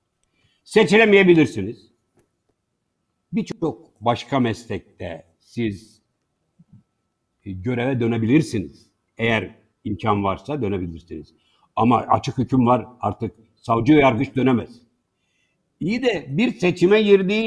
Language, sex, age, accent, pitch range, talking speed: Turkish, male, 60-79, native, 125-195 Hz, 85 wpm